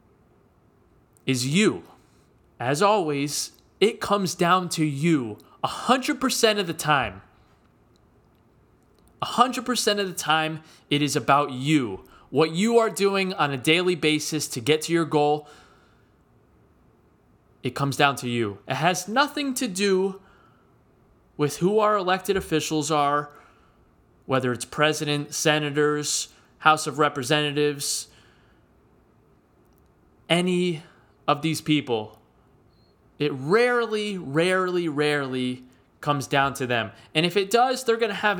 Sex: male